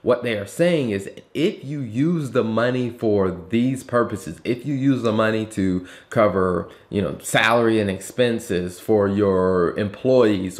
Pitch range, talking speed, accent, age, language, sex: 100-125 Hz, 160 wpm, American, 20-39, English, male